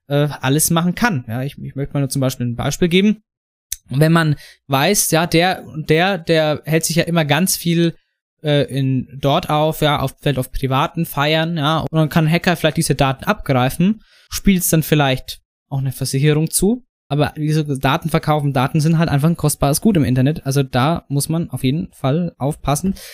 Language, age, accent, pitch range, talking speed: German, 20-39, German, 140-170 Hz, 195 wpm